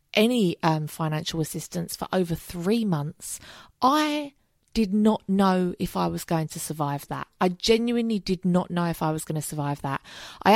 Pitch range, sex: 160-210 Hz, female